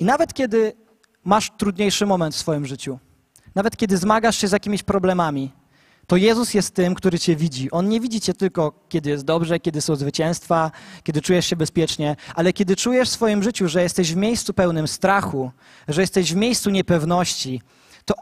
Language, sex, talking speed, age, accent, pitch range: Polish, male, 185 wpm, 20-39, native, 160-200 Hz